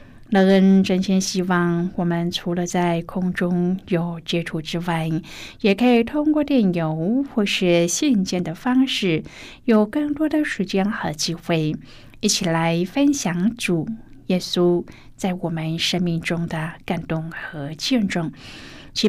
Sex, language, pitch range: female, Chinese, 165-205 Hz